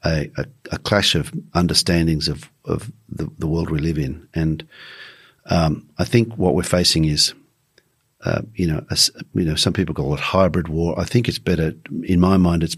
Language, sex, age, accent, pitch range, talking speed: English, male, 50-69, Australian, 80-90 Hz, 195 wpm